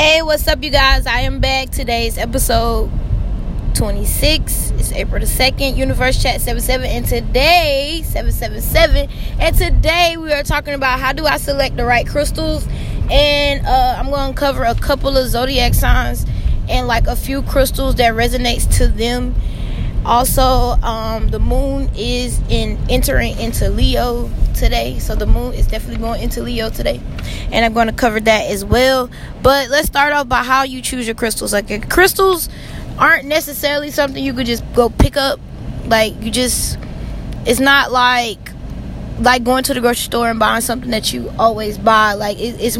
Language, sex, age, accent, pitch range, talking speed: English, female, 20-39, American, 225-285 Hz, 170 wpm